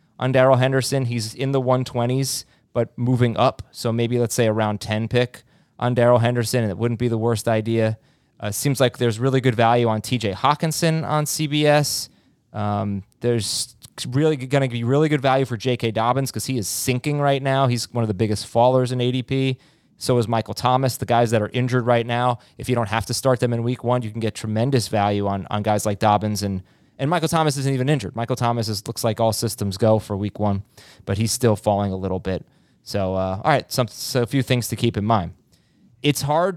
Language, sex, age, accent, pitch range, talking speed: English, male, 20-39, American, 115-155 Hz, 225 wpm